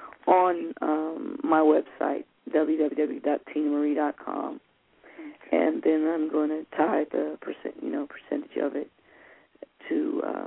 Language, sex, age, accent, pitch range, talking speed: English, female, 40-59, American, 150-185 Hz, 115 wpm